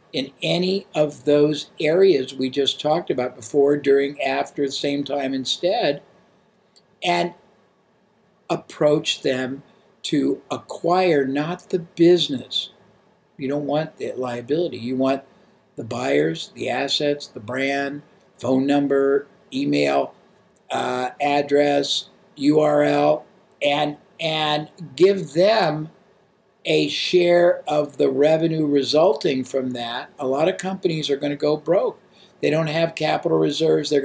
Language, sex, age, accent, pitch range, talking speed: English, male, 60-79, American, 140-175 Hz, 125 wpm